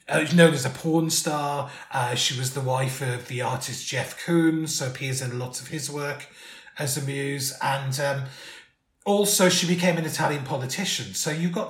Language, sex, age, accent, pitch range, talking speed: English, male, 30-49, British, 135-175 Hz, 190 wpm